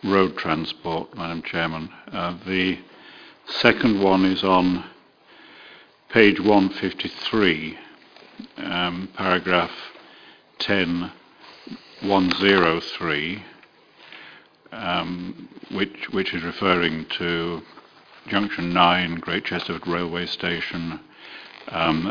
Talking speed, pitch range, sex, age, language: 75 wpm, 80-90 Hz, male, 60-79, English